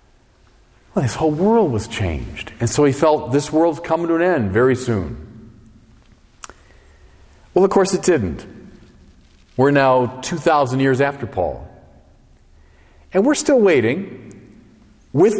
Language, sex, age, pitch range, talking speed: English, male, 40-59, 115-175 Hz, 130 wpm